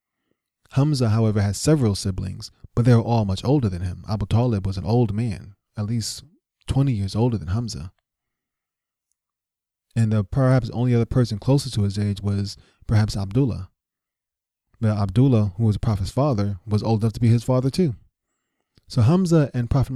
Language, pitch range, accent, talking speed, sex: English, 100-125 Hz, American, 175 wpm, male